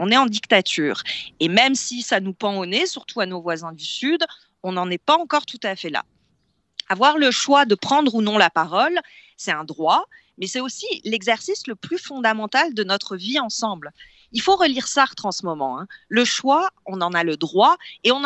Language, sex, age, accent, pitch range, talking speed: French, female, 40-59, French, 205-285 Hz, 220 wpm